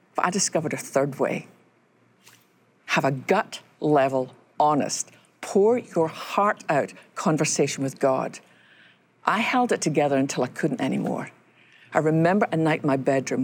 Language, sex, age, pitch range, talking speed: English, female, 50-69, 140-180 Hz, 145 wpm